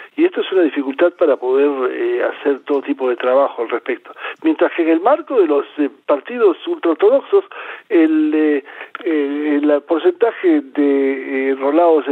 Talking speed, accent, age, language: 165 wpm, Argentinian, 60-79, Spanish